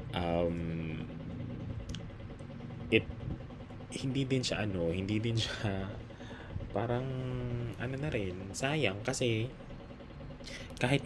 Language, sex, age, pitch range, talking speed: Filipino, male, 20-39, 80-115 Hz, 85 wpm